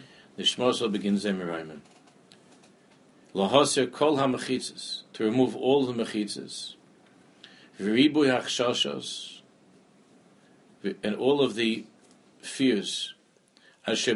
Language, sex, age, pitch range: English, male, 60-79, 100-125 Hz